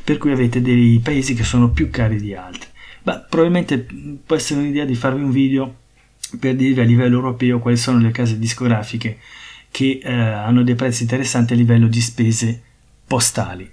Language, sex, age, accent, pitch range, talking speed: Italian, male, 30-49, native, 115-135 Hz, 180 wpm